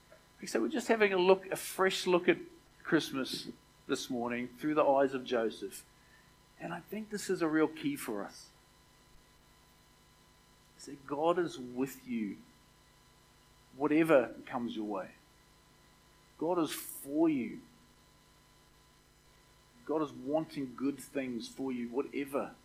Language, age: English, 50-69